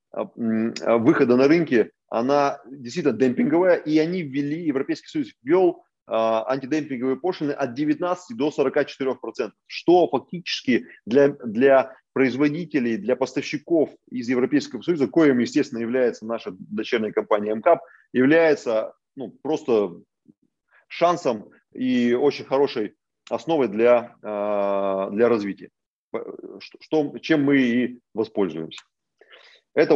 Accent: native